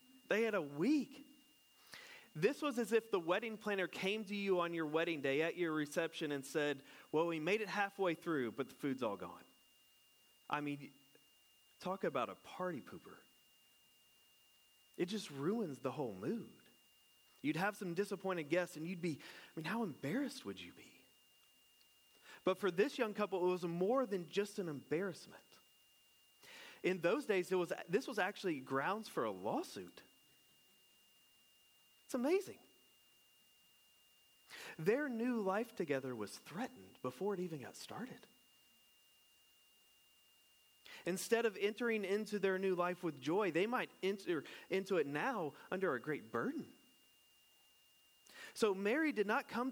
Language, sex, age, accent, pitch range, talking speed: English, male, 30-49, American, 170-225 Hz, 150 wpm